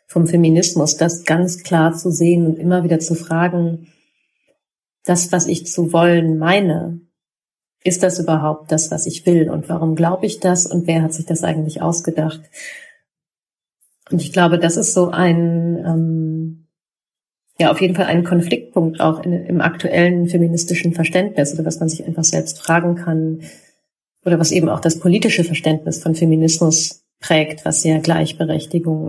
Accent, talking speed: German, 160 wpm